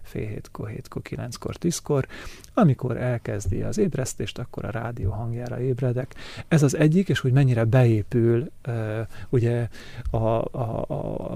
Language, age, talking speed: Hungarian, 30-49, 115 wpm